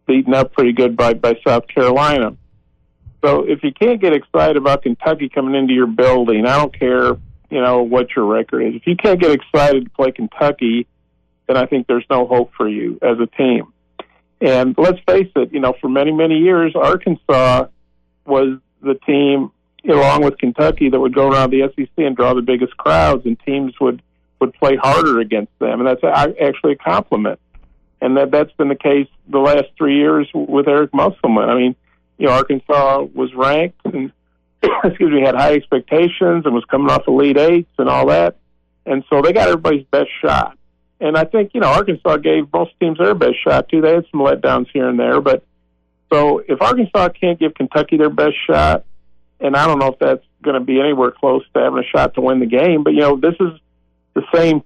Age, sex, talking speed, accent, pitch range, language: 50-69, male, 210 wpm, American, 120-150 Hz, English